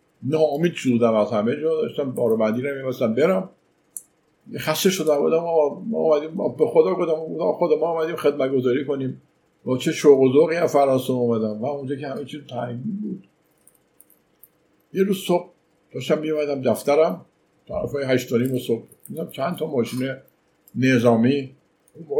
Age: 50-69